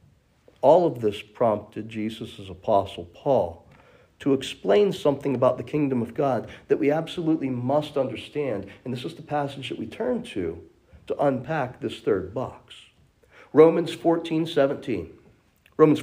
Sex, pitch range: male, 120-155 Hz